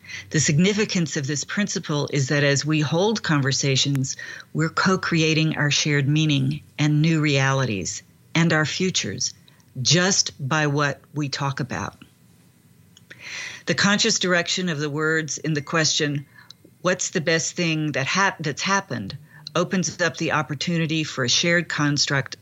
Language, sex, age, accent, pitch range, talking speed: English, female, 50-69, American, 135-165 Hz, 140 wpm